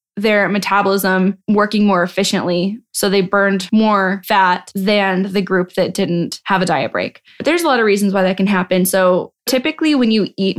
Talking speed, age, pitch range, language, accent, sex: 195 wpm, 10-29, 185-215 Hz, English, American, female